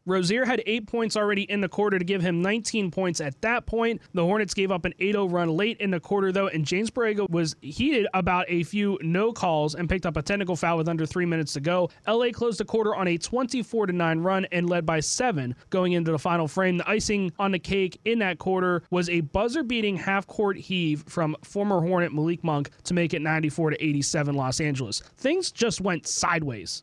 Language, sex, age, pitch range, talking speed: English, male, 20-39, 165-210 Hz, 215 wpm